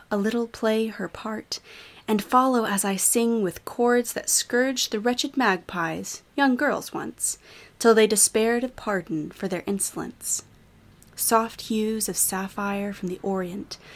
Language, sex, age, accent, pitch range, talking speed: English, female, 20-39, American, 190-240 Hz, 150 wpm